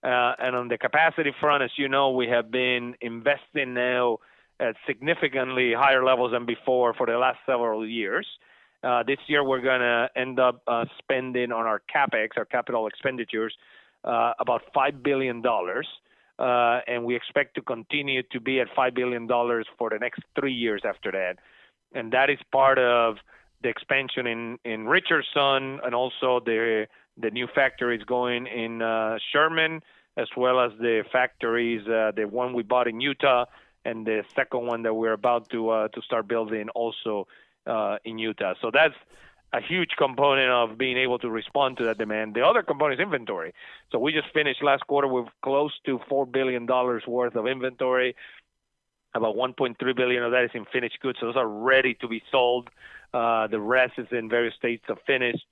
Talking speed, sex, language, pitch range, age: 185 wpm, male, English, 115-130 Hz, 30-49